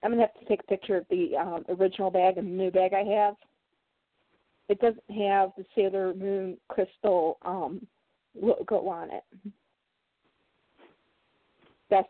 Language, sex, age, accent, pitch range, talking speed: English, female, 40-59, American, 210-290 Hz, 150 wpm